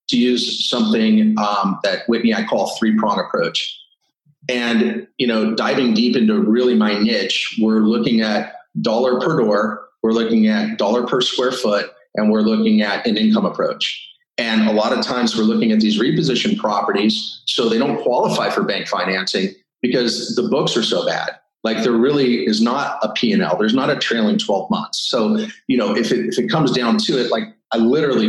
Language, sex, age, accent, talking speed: English, male, 30-49, American, 195 wpm